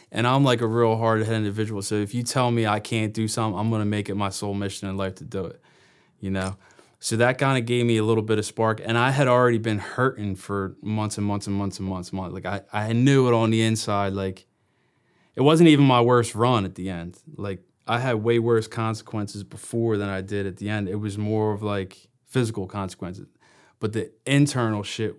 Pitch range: 100-115 Hz